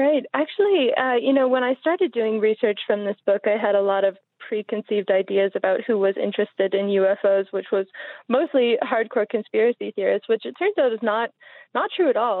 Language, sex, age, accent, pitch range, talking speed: English, female, 20-39, American, 200-250 Hz, 205 wpm